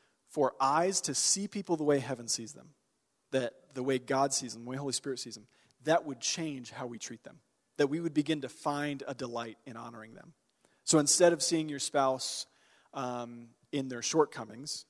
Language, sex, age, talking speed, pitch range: English, male, 40-59, 200 wpm, 125-155 Hz